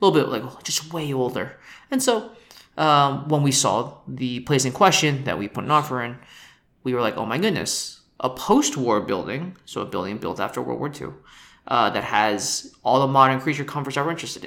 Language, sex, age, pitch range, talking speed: English, male, 20-39, 120-155 Hz, 210 wpm